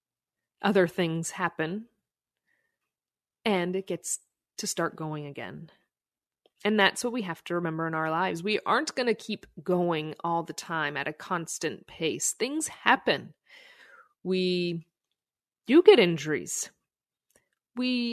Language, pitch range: English, 165-240 Hz